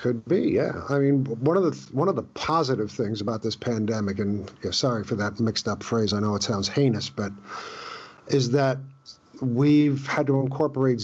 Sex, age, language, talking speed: male, 50-69, English, 195 wpm